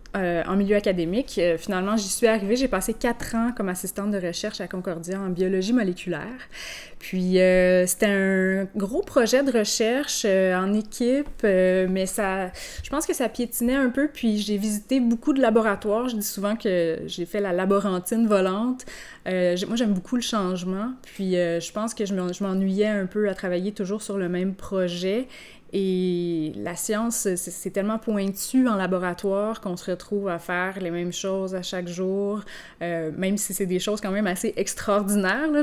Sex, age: female, 20-39